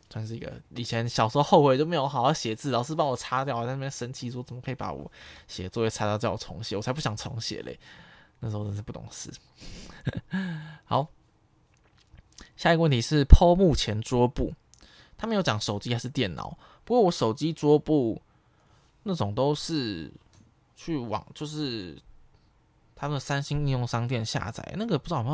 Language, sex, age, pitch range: Chinese, male, 20-39, 115-145 Hz